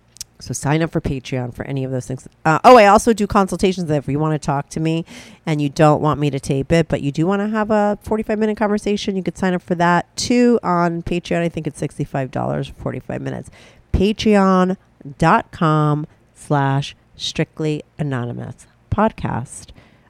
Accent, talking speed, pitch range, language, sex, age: American, 180 wpm, 140-190 Hz, English, female, 40-59